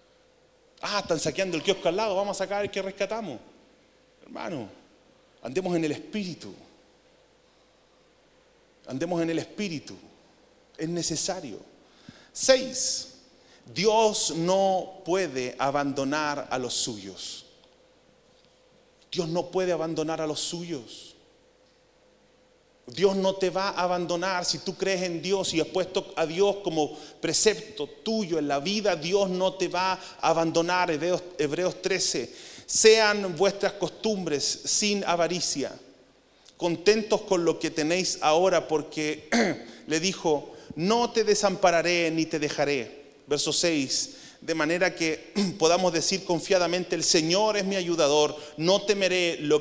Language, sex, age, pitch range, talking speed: Spanish, male, 30-49, 155-195 Hz, 130 wpm